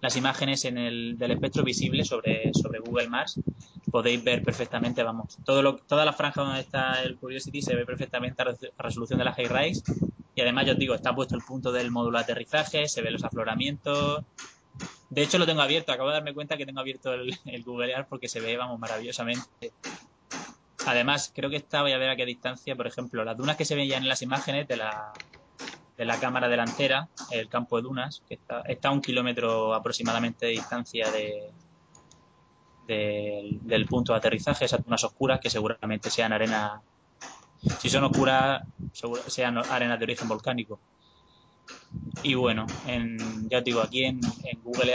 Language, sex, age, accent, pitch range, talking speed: Spanish, male, 20-39, Spanish, 115-135 Hz, 190 wpm